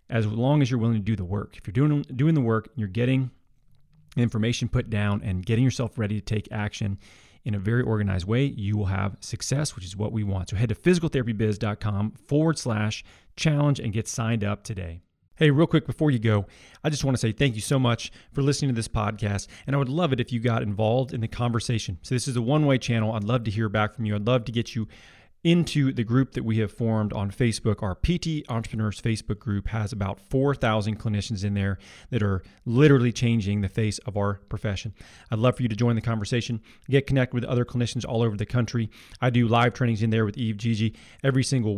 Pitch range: 105-130 Hz